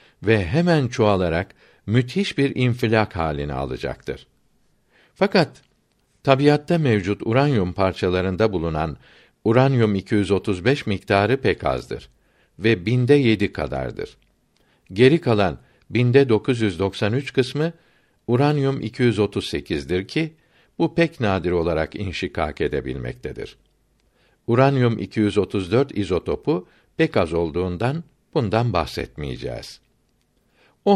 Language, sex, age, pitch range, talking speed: Turkish, male, 60-79, 90-135 Hz, 90 wpm